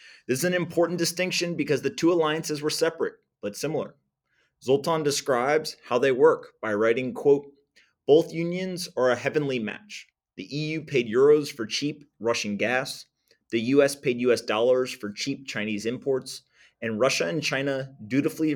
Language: English